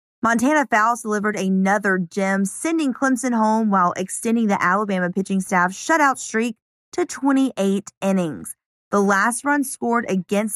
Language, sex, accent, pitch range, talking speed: English, female, American, 185-240 Hz, 135 wpm